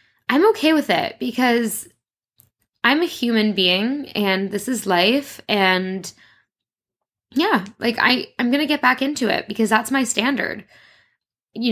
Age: 10-29